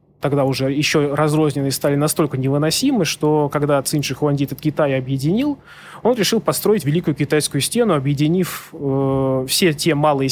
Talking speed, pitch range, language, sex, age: 145 wpm, 140-175 Hz, Russian, male, 20-39